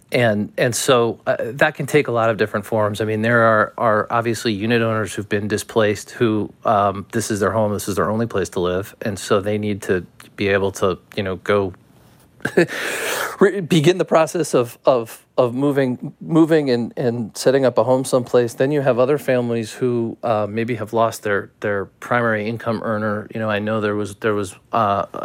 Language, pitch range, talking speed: English, 105-120 Hz, 205 wpm